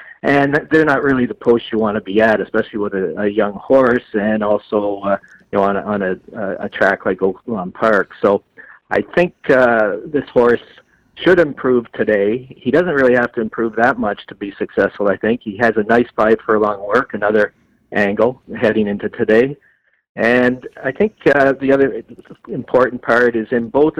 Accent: American